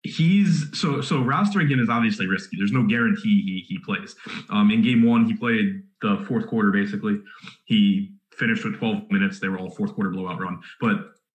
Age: 20-39